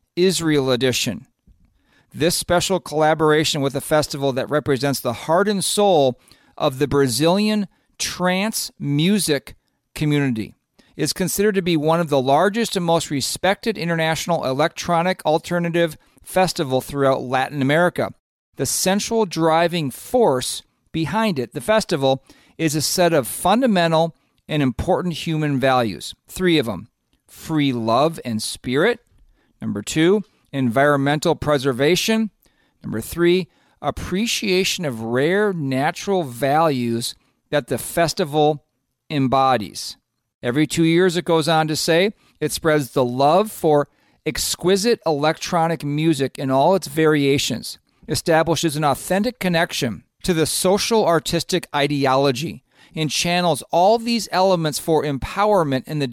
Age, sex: 50-69, male